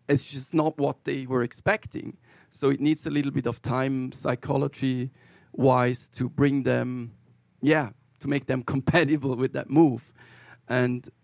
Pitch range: 125-140 Hz